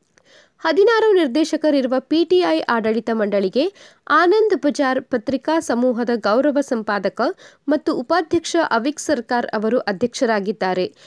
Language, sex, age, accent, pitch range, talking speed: Kannada, female, 20-39, native, 240-340 Hz, 90 wpm